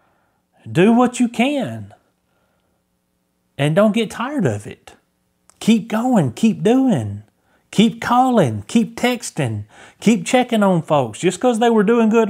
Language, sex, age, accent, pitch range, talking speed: English, male, 30-49, American, 120-195 Hz, 135 wpm